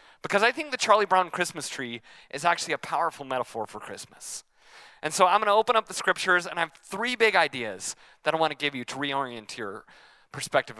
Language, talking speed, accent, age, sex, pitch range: English, 220 wpm, American, 30-49, male, 135-185 Hz